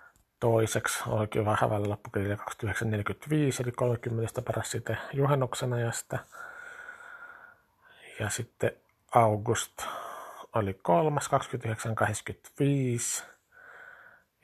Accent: native